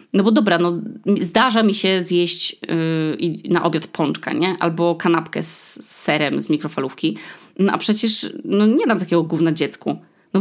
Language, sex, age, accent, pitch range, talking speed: Polish, female, 20-39, native, 155-200 Hz, 175 wpm